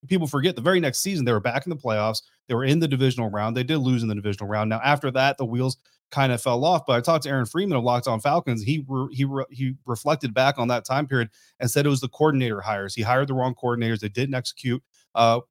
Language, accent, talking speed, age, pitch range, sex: English, American, 275 wpm, 30-49, 115-140 Hz, male